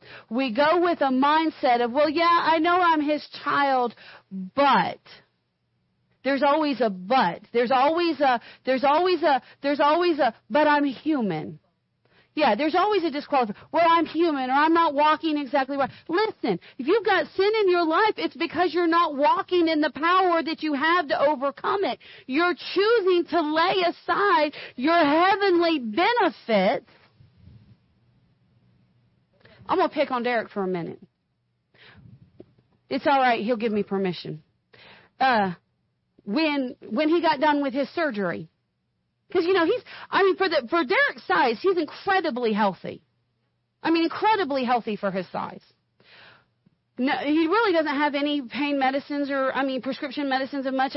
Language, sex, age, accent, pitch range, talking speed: English, female, 40-59, American, 245-330 Hz, 155 wpm